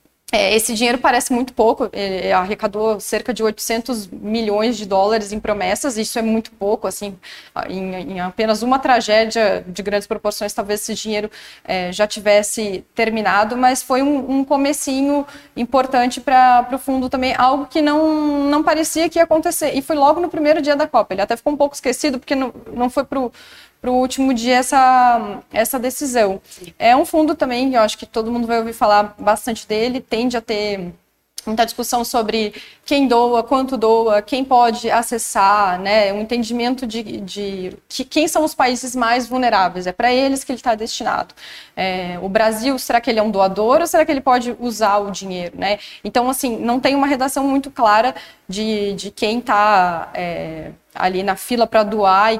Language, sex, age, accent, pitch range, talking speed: Portuguese, female, 20-39, Brazilian, 210-265 Hz, 180 wpm